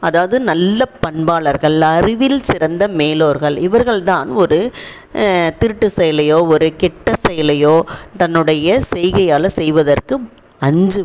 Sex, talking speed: female, 90 wpm